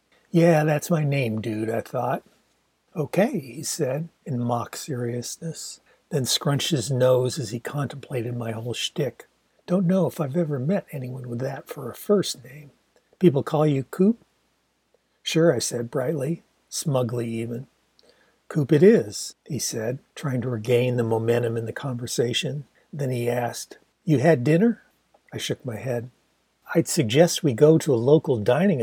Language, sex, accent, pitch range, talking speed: English, male, American, 120-160 Hz, 160 wpm